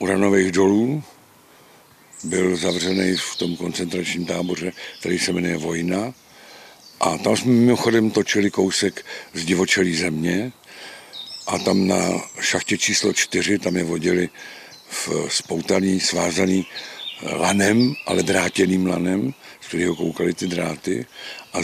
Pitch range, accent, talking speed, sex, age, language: 90-105 Hz, native, 115 wpm, male, 50-69, Czech